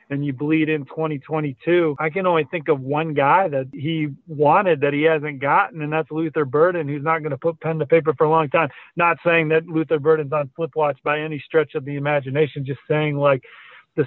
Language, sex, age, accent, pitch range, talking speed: English, male, 40-59, American, 150-165 Hz, 220 wpm